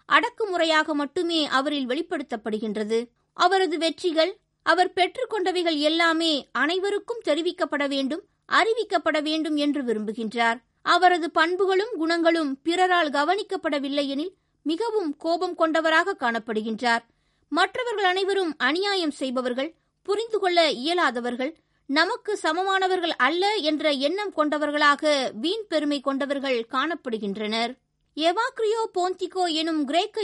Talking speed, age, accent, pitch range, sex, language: 95 wpm, 20-39, native, 295-365 Hz, female, Tamil